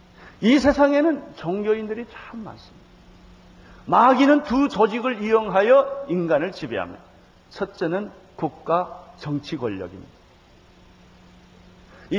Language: Korean